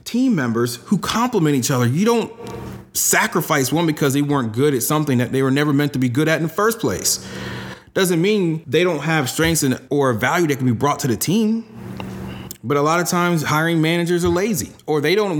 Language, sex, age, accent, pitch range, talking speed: English, male, 30-49, American, 120-155 Hz, 220 wpm